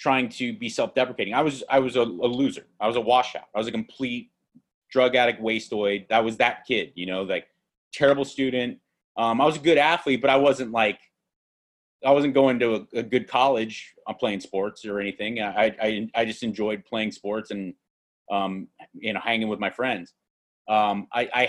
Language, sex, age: English, male, 30-49